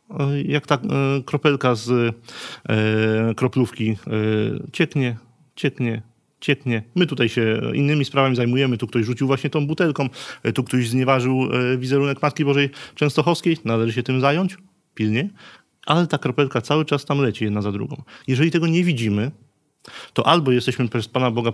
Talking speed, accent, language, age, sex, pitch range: 145 wpm, Polish, English, 30-49, male, 110-140 Hz